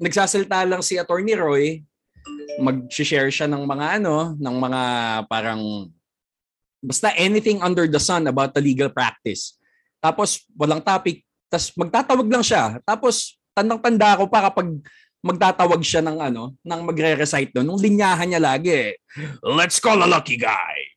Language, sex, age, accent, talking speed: Filipino, male, 20-39, native, 140 wpm